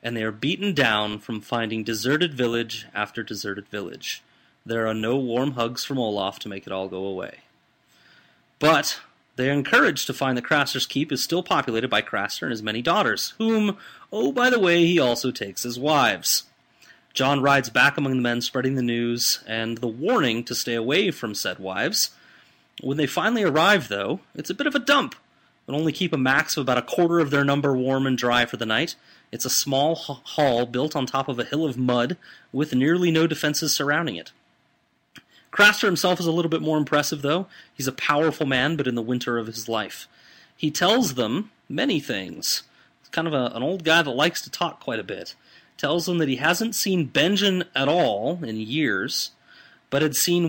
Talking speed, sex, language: 205 wpm, male, English